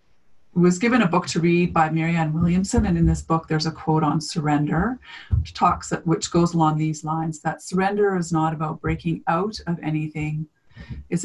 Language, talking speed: English, 185 wpm